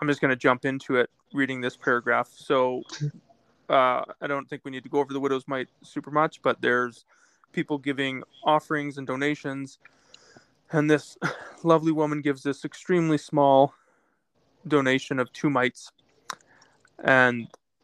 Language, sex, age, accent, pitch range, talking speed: English, male, 20-39, American, 135-155 Hz, 150 wpm